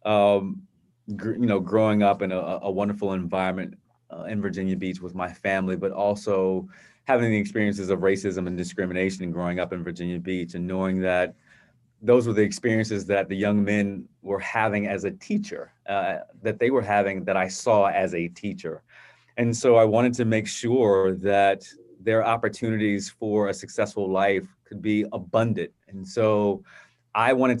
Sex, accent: male, American